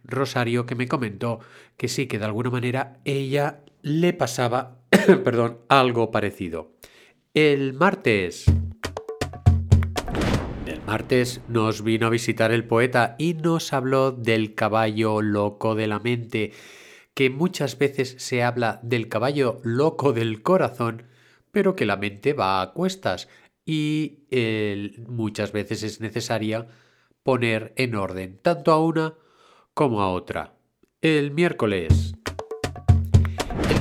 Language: Spanish